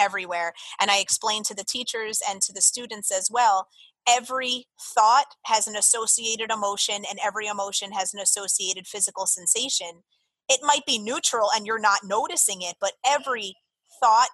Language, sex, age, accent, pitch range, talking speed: English, female, 30-49, American, 200-255 Hz, 165 wpm